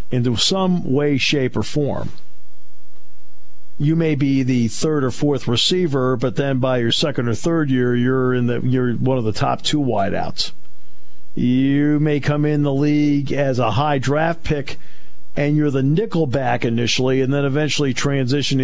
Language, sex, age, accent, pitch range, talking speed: English, male, 50-69, American, 110-155 Hz, 165 wpm